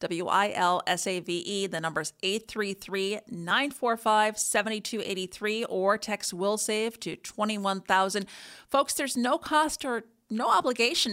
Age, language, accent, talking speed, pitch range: 40-59, English, American, 90 wpm, 185-225 Hz